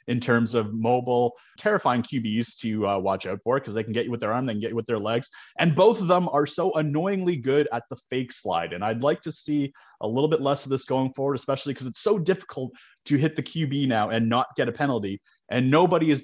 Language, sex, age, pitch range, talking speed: English, male, 20-39, 115-150 Hz, 255 wpm